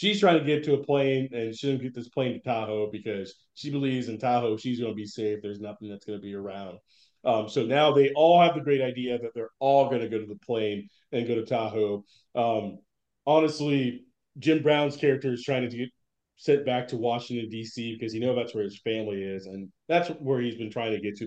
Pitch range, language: 110-135 Hz, English